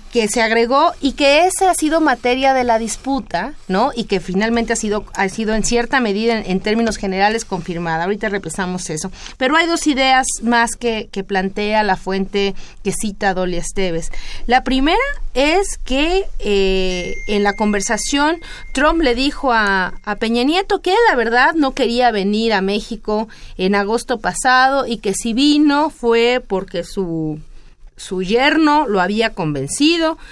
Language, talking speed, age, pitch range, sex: Spanish, 165 wpm, 30-49, 190-255 Hz, female